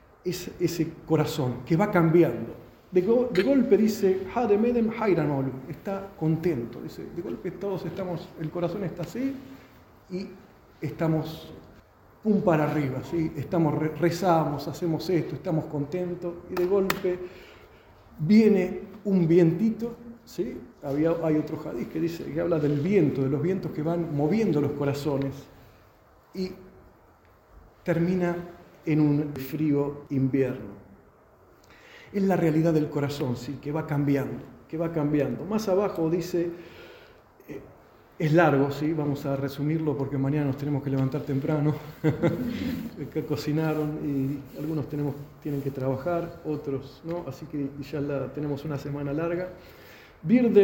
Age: 40-59